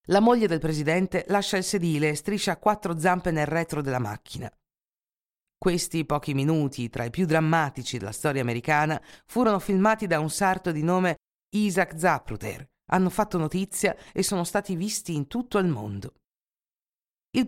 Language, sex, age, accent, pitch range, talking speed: Italian, female, 50-69, native, 150-195 Hz, 160 wpm